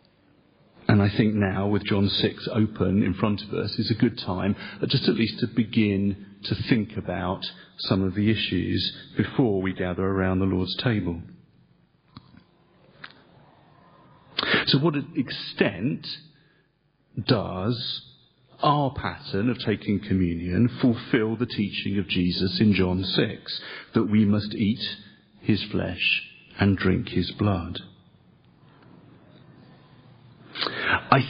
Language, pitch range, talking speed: English, 95-125 Hz, 120 wpm